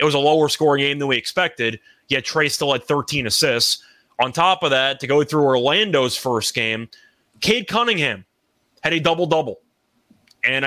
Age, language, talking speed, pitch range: 20-39, English, 170 wpm, 130-160 Hz